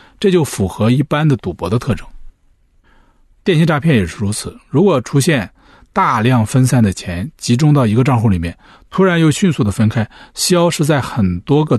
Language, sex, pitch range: Chinese, male, 105-150 Hz